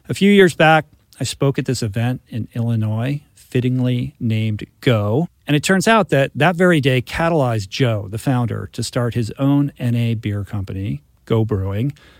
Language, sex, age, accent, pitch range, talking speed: English, male, 40-59, American, 110-140 Hz, 170 wpm